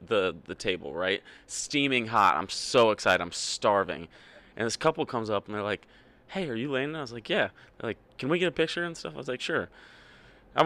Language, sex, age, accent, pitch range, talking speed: English, male, 20-39, American, 100-140 Hz, 235 wpm